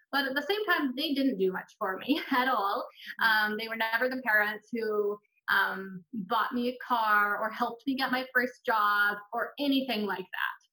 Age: 20-39